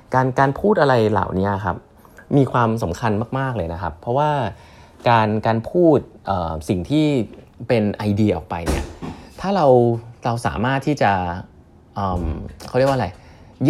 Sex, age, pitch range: male, 20-39, 95-130 Hz